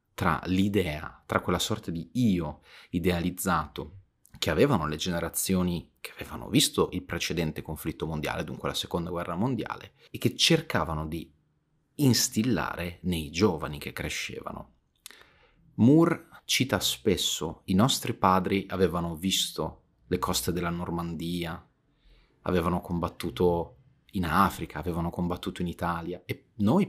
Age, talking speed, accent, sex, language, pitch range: 30-49, 125 wpm, native, male, Italian, 85-95 Hz